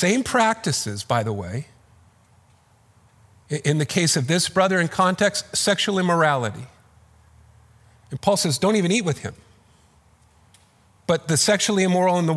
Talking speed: 140 wpm